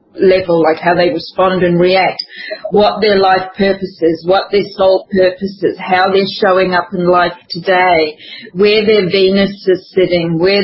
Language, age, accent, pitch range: English, 40-59, Australian, 185-230 Hz